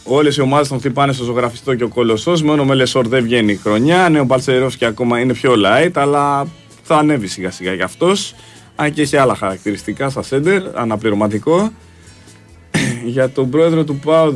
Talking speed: 175 wpm